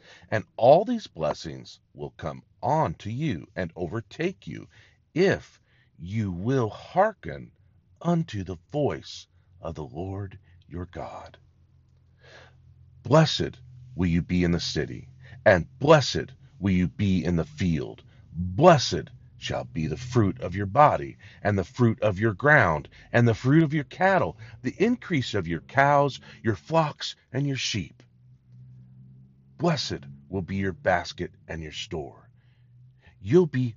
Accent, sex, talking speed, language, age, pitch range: American, male, 140 wpm, English, 50-69, 90-130 Hz